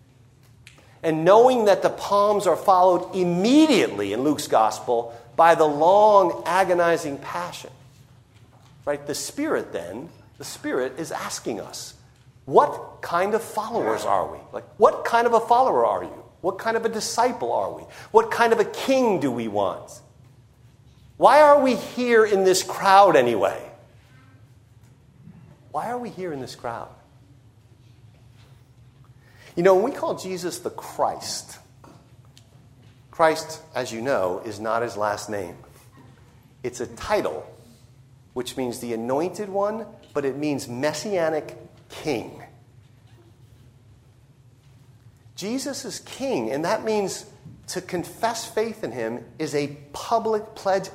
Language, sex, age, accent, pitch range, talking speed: English, male, 50-69, American, 120-190 Hz, 135 wpm